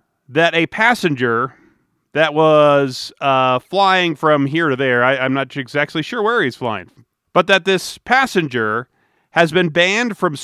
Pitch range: 135-180 Hz